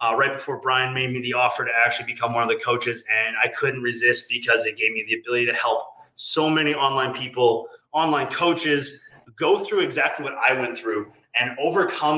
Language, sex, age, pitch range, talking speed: English, male, 20-39, 125-155 Hz, 205 wpm